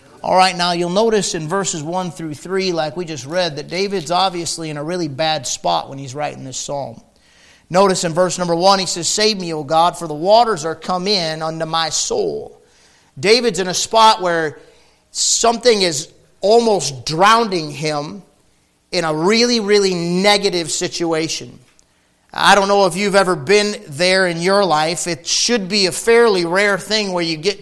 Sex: male